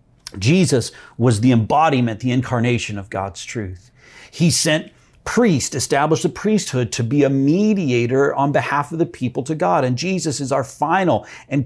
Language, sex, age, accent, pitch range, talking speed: English, male, 40-59, American, 125-170 Hz, 165 wpm